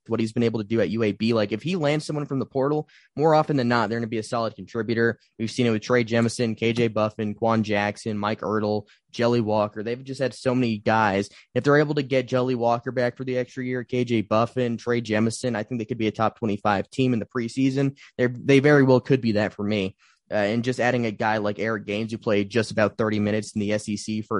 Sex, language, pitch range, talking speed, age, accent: male, English, 110-130 Hz, 255 wpm, 20-39, American